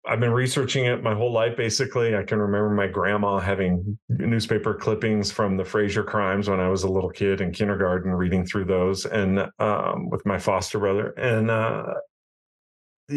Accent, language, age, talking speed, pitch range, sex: American, English, 40-59, 180 wpm, 95-115 Hz, male